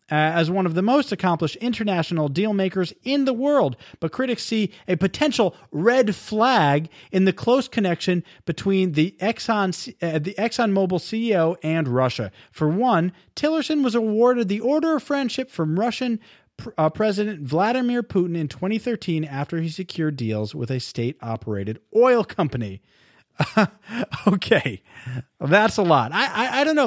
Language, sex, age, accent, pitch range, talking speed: English, male, 40-59, American, 155-230 Hz, 155 wpm